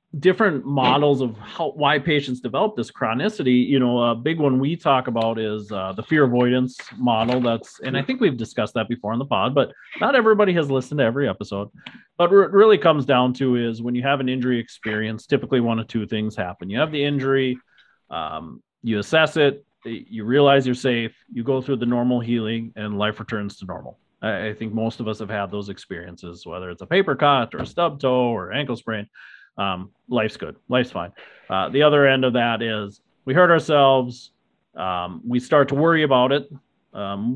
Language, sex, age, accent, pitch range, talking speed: English, male, 30-49, American, 110-140 Hz, 210 wpm